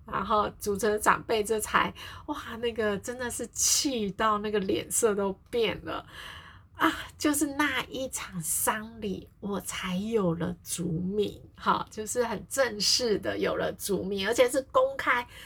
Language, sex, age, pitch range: Chinese, female, 30-49, 190-255 Hz